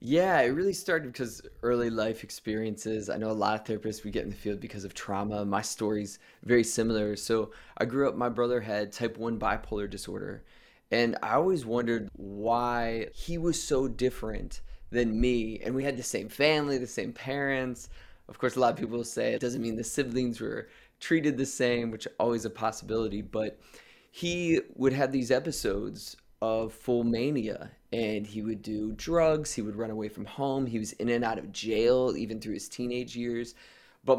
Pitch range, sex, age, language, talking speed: 110-130 Hz, male, 20-39, English, 195 wpm